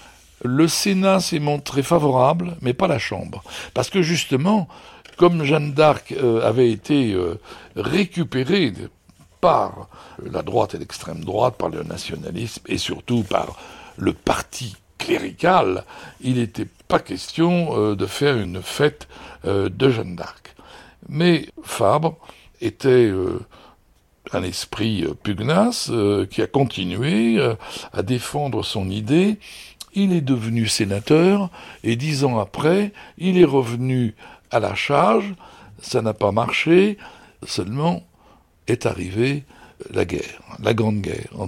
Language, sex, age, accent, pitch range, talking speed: French, male, 60-79, French, 110-155 Hz, 120 wpm